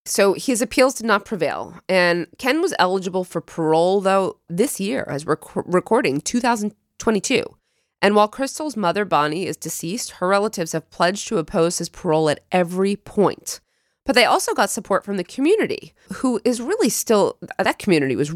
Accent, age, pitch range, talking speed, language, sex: American, 30-49, 165-230 Hz, 170 wpm, English, female